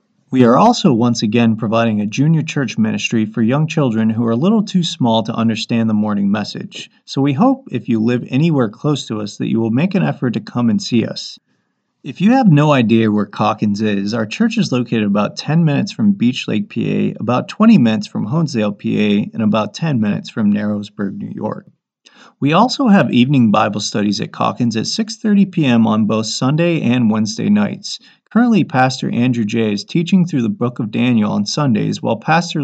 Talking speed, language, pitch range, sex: 200 wpm, English, 110-175 Hz, male